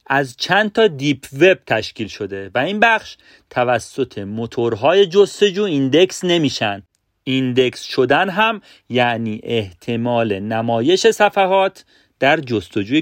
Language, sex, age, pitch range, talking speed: Persian, male, 40-59, 110-185 Hz, 110 wpm